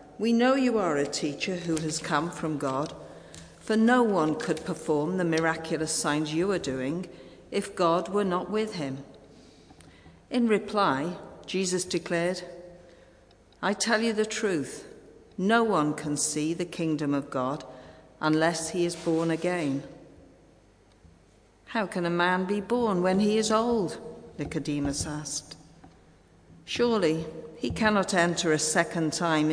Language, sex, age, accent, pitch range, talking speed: English, female, 50-69, British, 155-200 Hz, 140 wpm